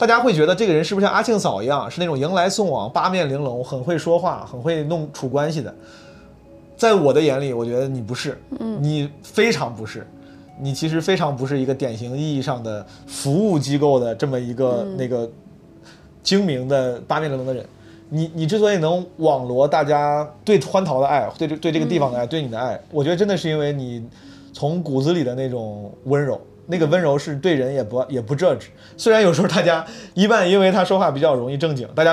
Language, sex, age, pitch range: Chinese, male, 20-39, 130-175 Hz